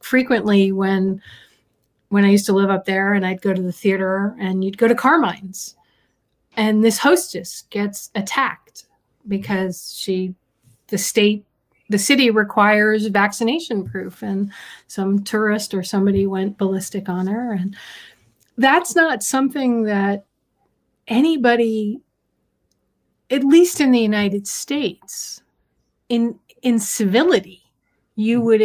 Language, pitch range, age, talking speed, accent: English, 195-235 Hz, 40-59, 125 wpm, American